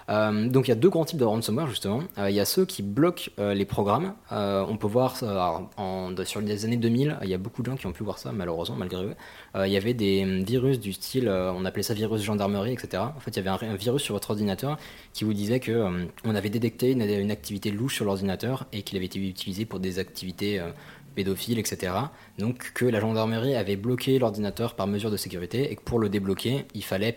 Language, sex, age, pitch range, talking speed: French, male, 20-39, 100-125 Hz, 255 wpm